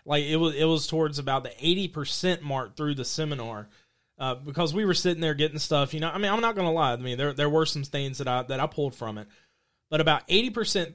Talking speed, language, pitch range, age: 260 wpm, English, 125-160 Hz, 30-49